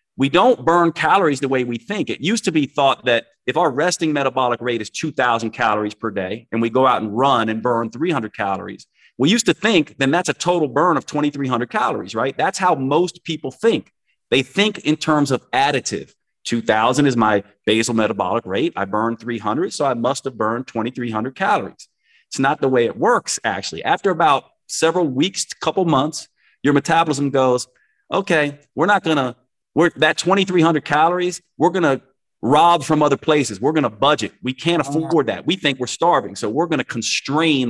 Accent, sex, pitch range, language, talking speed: American, male, 120-165 Hz, English, 195 wpm